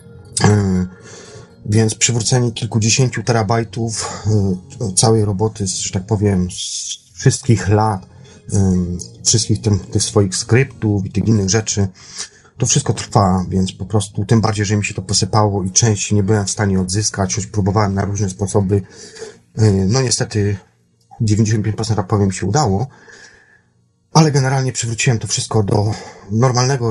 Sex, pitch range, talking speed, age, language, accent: male, 100-115 Hz, 130 wpm, 30-49, Polish, native